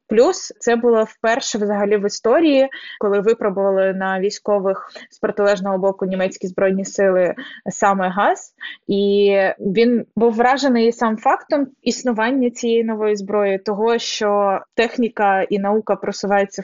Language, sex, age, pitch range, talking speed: Ukrainian, female, 20-39, 195-230 Hz, 125 wpm